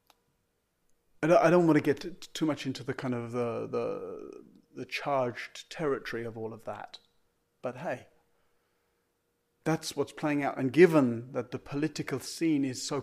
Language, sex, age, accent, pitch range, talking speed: English, male, 40-59, British, 125-165 Hz, 155 wpm